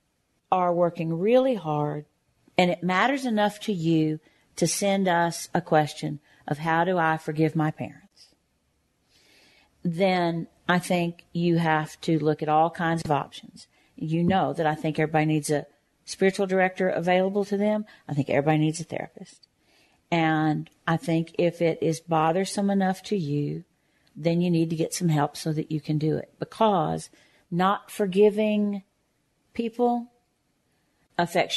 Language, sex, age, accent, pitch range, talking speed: English, female, 50-69, American, 155-185 Hz, 155 wpm